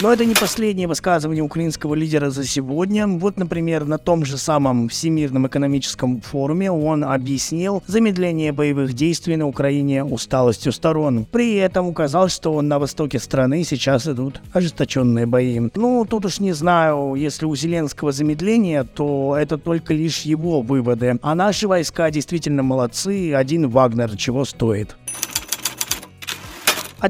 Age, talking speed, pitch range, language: 20-39, 140 wpm, 135-175 Hz, Russian